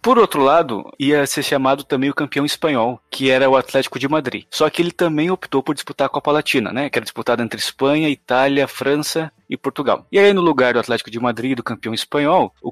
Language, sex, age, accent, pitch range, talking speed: Portuguese, male, 20-39, Brazilian, 125-150 Hz, 230 wpm